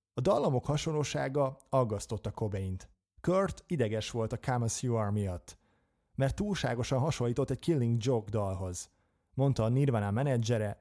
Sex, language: male, Hungarian